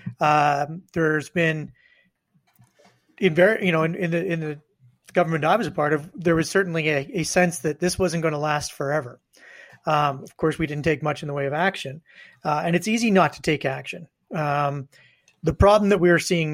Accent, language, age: American, English, 30-49